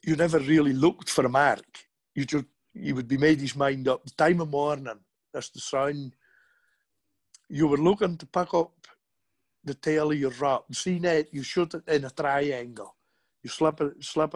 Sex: male